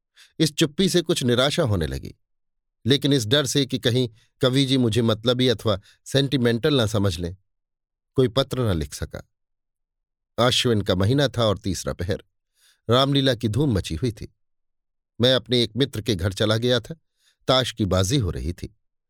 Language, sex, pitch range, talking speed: Hindi, male, 95-130 Hz, 175 wpm